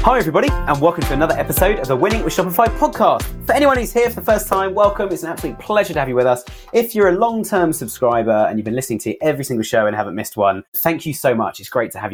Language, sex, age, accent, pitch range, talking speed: English, male, 30-49, British, 110-180 Hz, 275 wpm